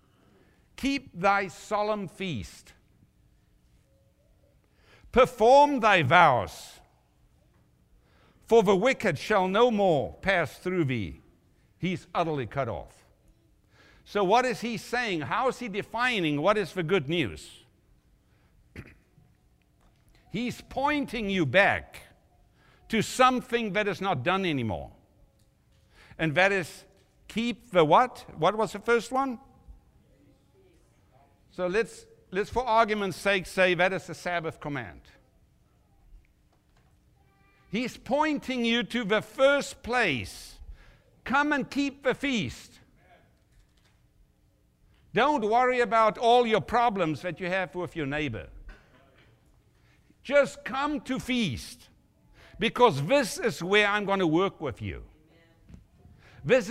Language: English